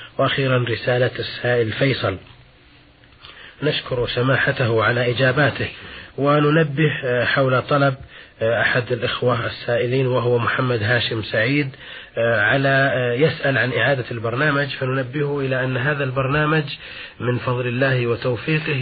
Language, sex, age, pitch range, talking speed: Arabic, male, 30-49, 120-140 Hz, 100 wpm